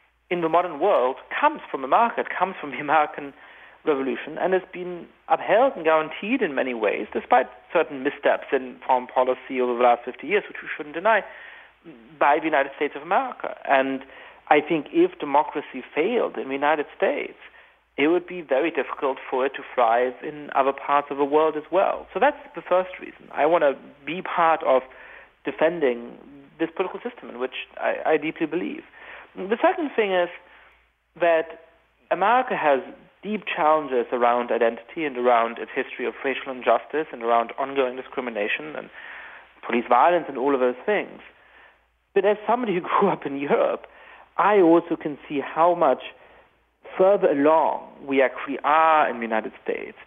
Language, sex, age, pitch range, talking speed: English, male, 40-59, 130-180 Hz, 170 wpm